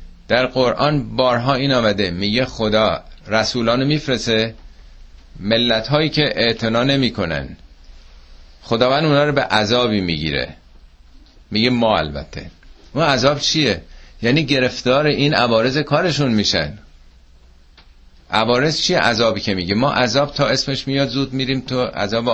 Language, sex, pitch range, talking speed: Persian, male, 100-140 Hz, 120 wpm